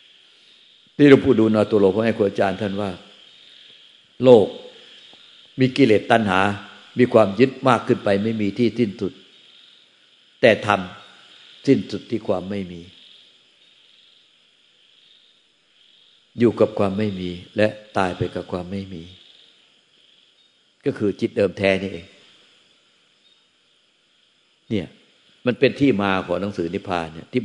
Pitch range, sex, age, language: 95-115 Hz, male, 60-79, Thai